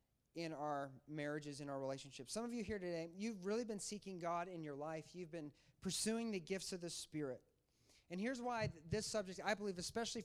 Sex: male